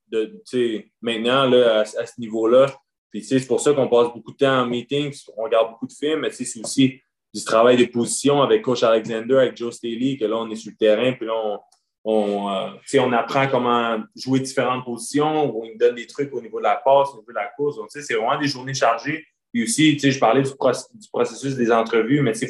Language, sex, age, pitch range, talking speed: French, male, 20-39, 115-140 Hz, 230 wpm